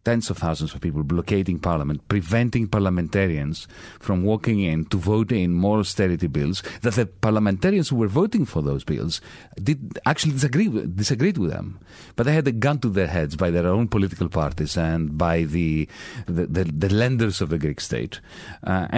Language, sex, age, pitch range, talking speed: English, male, 40-59, 85-115 Hz, 185 wpm